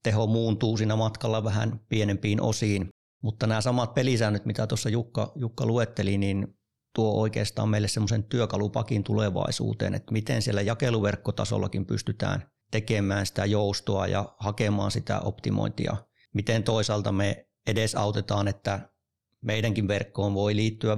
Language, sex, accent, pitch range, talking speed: Finnish, male, native, 100-115 Hz, 130 wpm